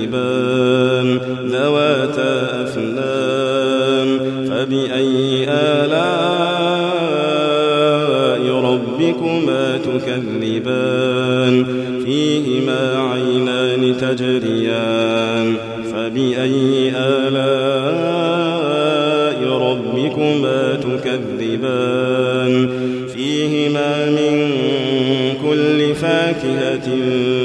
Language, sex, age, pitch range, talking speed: Arabic, male, 40-59, 125-150 Hz, 35 wpm